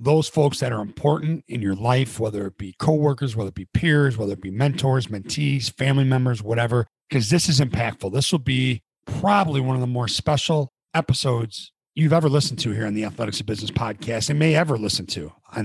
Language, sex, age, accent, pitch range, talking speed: English, male, 40-59, American, 110-145 Hz, 210 wpm